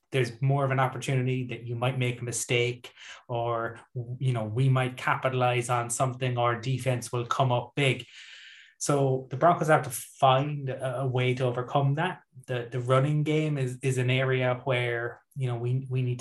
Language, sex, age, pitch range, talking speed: English, male, 20-39, 120-135 Hz, 185 wpm